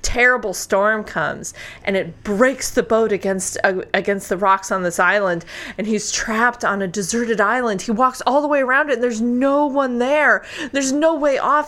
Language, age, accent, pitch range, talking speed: English, 30-49, American, 210-275 Hz, 200 wpm